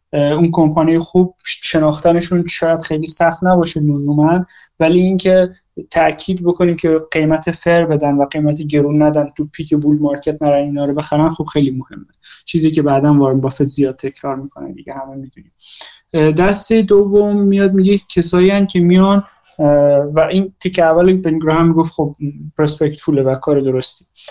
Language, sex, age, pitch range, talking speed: Persian, male, 20-39, 150-175 Hz, 150 wpm